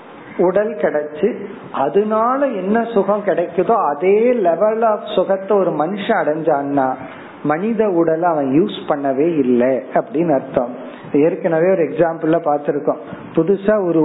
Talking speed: 70 wpm